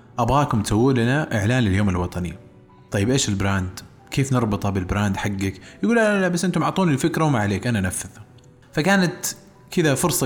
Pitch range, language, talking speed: 105-140 Hz, Arabic, 160 wpm